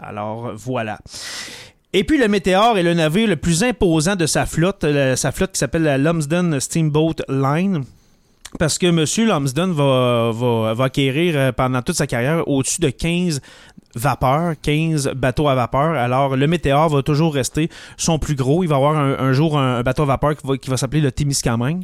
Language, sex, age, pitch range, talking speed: French, male, 30-49, 130-165 Hz, 190 wpm